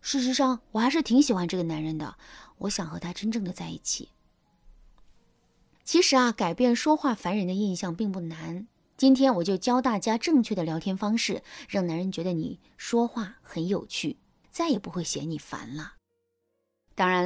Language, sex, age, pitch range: Chinese, female, 20-39, 175-275 Hz